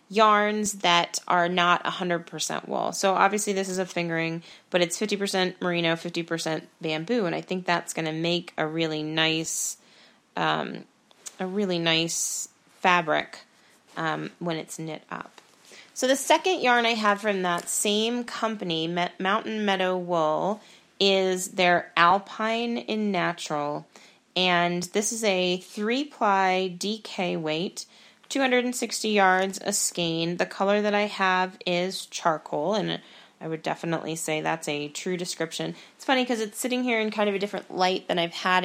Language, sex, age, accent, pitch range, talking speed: English, female, 30-49, American, 170-210 Hz, 160 wpm